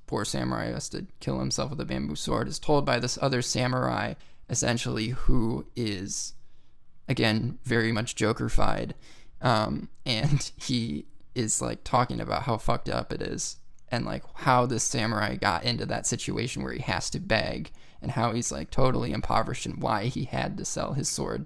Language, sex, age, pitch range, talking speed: English, male, 20-39, 105-130 Hz, 175 wpm